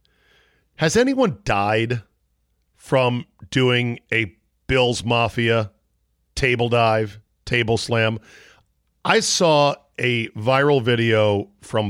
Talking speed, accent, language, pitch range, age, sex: 90 wpm, American, English, 110-155 Hz, 50-69, male